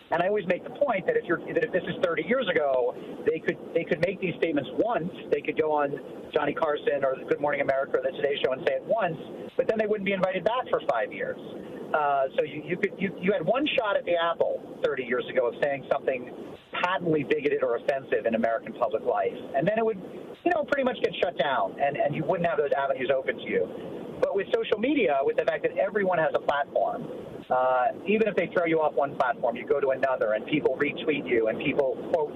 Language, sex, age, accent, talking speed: English, male, 40-59, American, 245 wpm